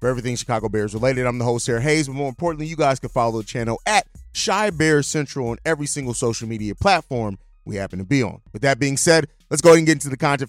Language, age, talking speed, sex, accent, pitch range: English, 30-49, 265 wpm, male, American, 135-170 Hz